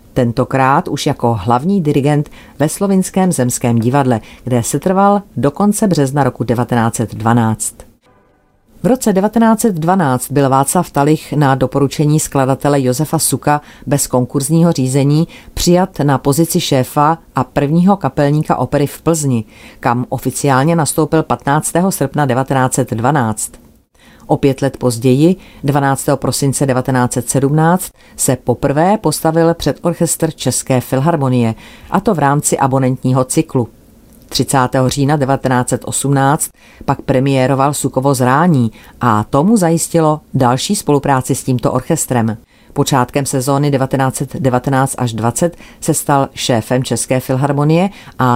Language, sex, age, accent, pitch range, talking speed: Czech, female, 40-59, native, 125-160 Hz, 115 wpm